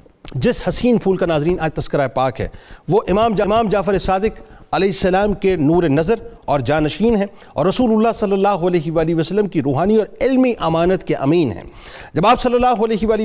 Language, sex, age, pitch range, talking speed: Urdu, male, 40-59, 170-220 Hz, 205 wpm